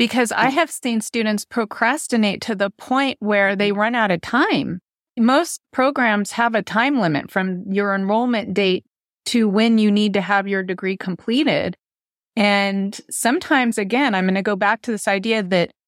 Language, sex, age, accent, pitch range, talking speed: English, female, 30-49, American, 195-235 Hz, 175 wpm